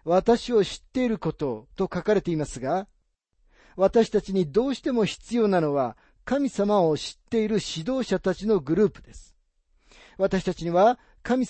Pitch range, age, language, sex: 150-220 Hz, 40-59, Japanese, male